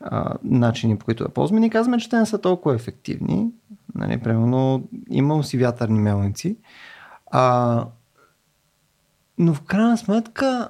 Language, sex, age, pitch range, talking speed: Bulgarian, male, 30-49, 120-185 Hz, 140 wpm